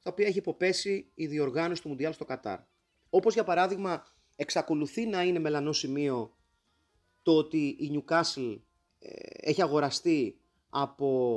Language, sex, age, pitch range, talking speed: Greek, male, 30-49, 140-220 Hz, 130 wpm